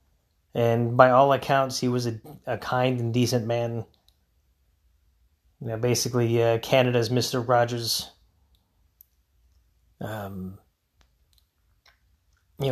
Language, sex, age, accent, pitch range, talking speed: English, male, 30-49, American, 80-125 Hz, 100 wpm